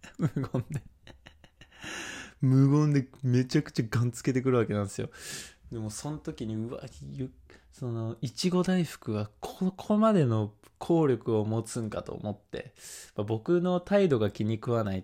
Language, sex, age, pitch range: Japanese, male, 20-39, 100-130 Hz